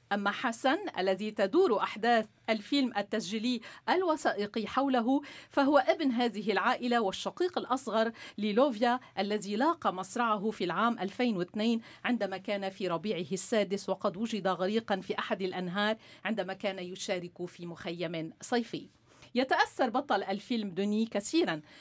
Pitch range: 200-270 Hz